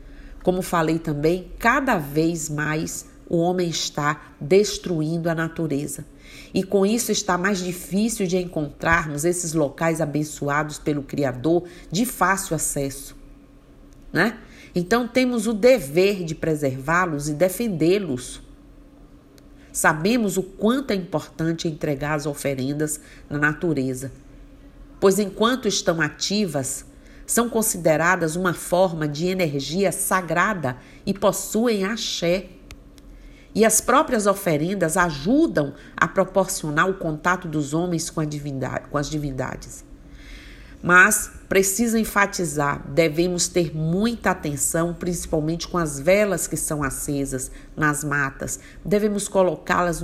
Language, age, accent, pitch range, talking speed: Portuguese, 50-69, Brazilian, 150-190 Hz, 115 wpm